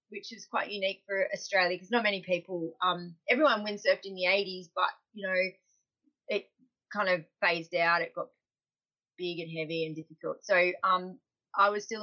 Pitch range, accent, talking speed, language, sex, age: 190-230 Hz, Australian, 180 wpm, English, female, 30-49